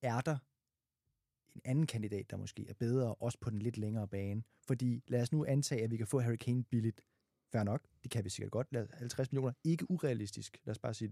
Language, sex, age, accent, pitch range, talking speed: Danish, male, 20-39, native, 120-145 Hz, 220 wpm